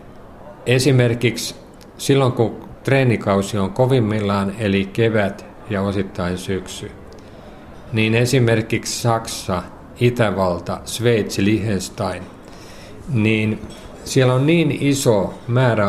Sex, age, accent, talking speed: male, 50-69, native, 85 wpm